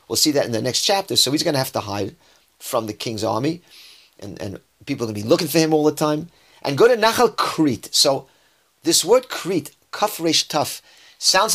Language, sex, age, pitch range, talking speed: English, male, 40-59, 120-170 Hz, 225 wpm